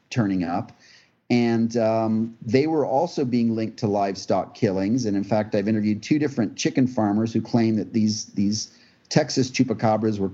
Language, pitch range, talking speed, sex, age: English, 105-130 Hz, 170 wpm, male, 40-59